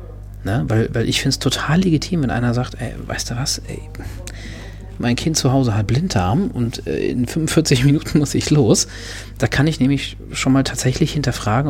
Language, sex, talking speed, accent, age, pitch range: German, male, 195 wpm, German, 40-59, 105-135 Hz